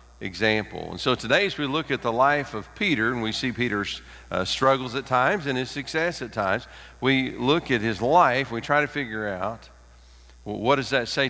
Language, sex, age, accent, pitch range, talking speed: English, male, 50-69, American, 95-125 Hz, 210 wpm